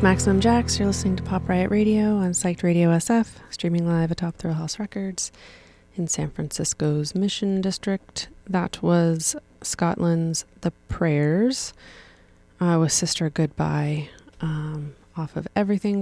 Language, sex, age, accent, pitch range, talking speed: English, female, 20-39, American, 155-190 Hz, 140 wpm